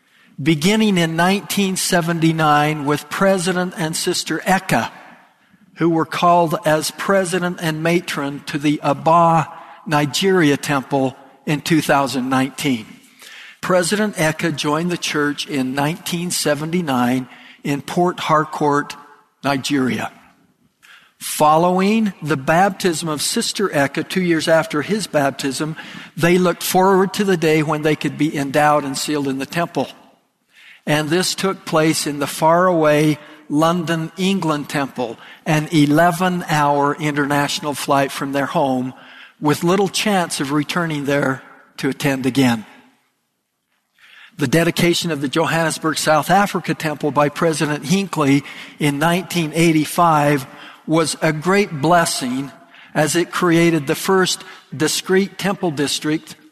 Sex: male